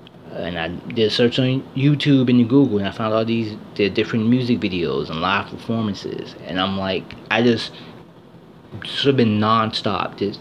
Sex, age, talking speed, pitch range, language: male, 30-49, 180 wpm, 95-125 Hz, English